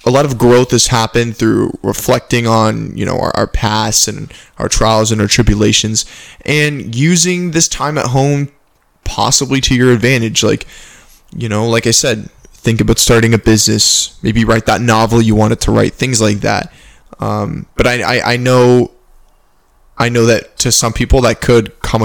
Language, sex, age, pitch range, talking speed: English, male, 10-29, 110-125 Hz, 180 wpm